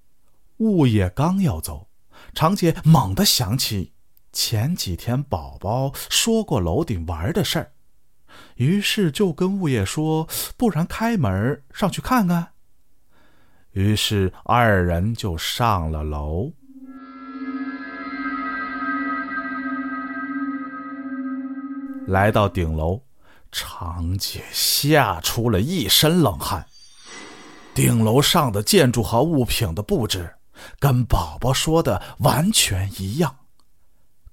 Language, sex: Chinese, male